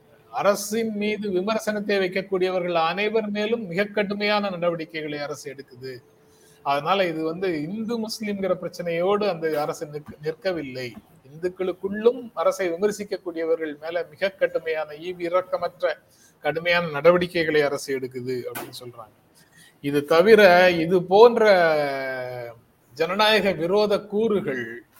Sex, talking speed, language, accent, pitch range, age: male, 95 wpm, Tamil, native, 150-190 Hz, 30-49